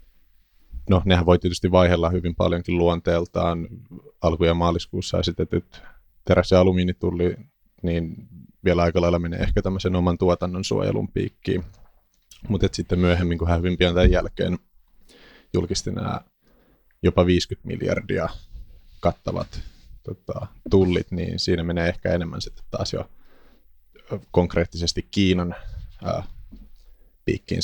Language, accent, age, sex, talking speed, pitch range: Finnish, native, 30-49, male, 115 wpm, 85-95 Hz